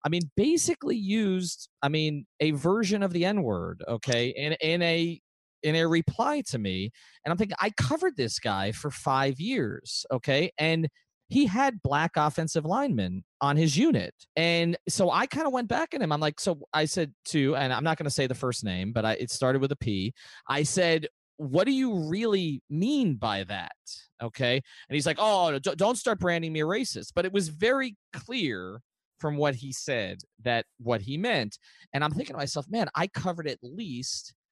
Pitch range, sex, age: 120-175 Hz, male, 30-49